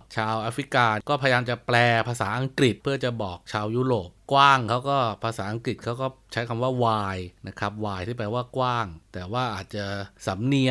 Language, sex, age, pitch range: Thai, male, 20-39, 105-135 Hz